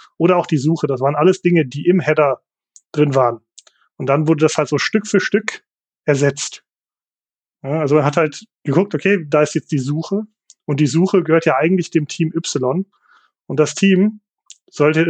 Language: German